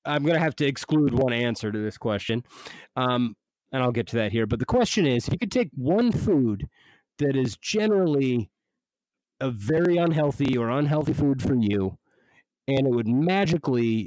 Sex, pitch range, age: male, 120-165 Hz, 40-59